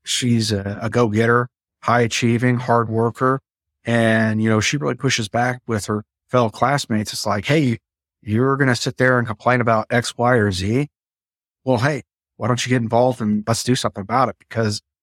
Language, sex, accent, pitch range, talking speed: English, male, American, 105-125 Hz, 190 wpm